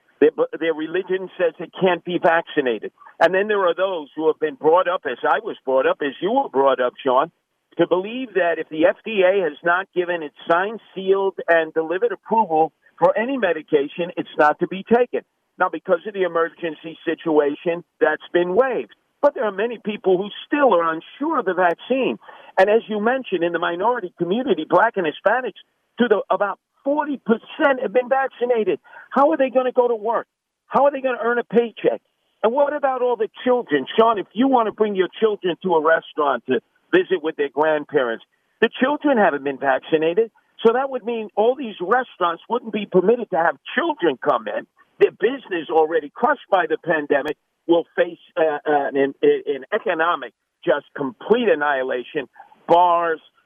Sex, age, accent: male, 50-69, American